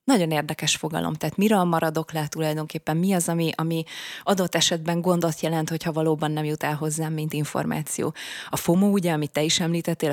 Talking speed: 185 wpm